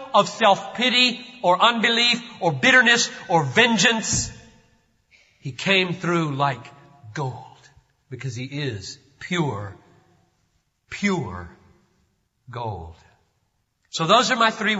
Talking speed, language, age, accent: 95 wpm, English, 40-59, American